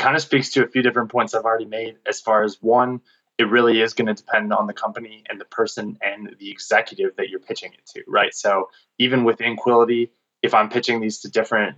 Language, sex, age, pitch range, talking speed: English, male, 20-39, 110-135 Hz, 235 wpm